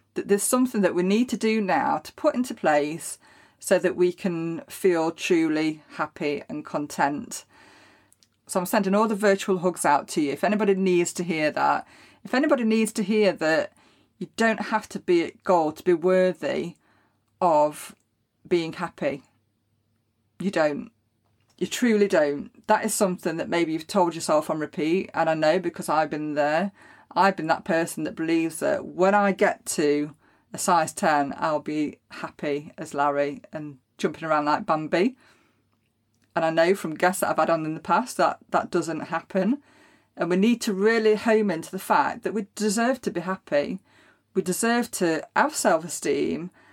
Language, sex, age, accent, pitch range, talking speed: English, female, 30-49, British, 155-215 Hz, 175 wpm